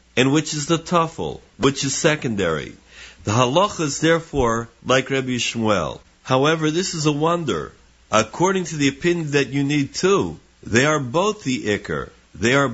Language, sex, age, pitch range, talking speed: English, male, 50-69, 125-160 Hz, 165 wpm